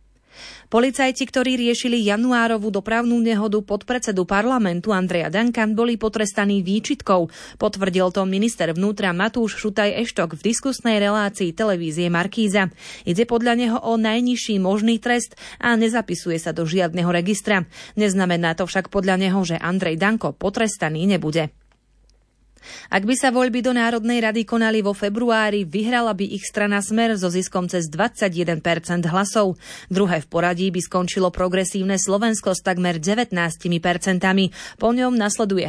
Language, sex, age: Slovak, female, 30-49